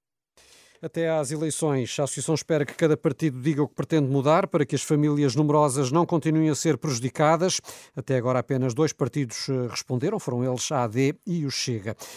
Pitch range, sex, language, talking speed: 130-165 Hz, male, Portuguese, 180 wpm